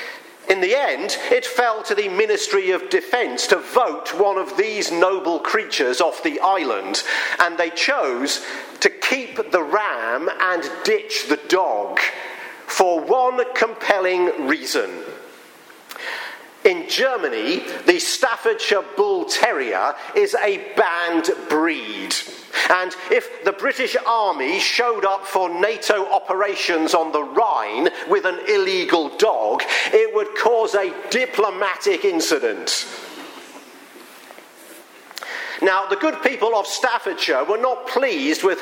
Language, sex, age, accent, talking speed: English, male, 50-69, British, 120 wpm